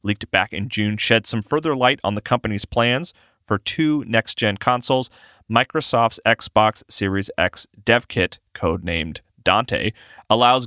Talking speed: 140 wpm